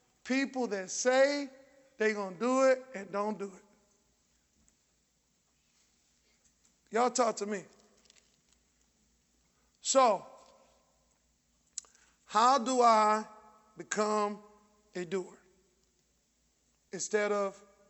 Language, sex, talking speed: English, male, 85 wpm